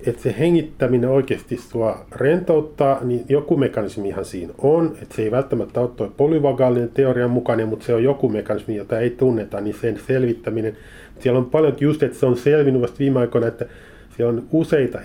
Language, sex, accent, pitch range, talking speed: Finnish, male, native, 105-125 Hz, 185 wpm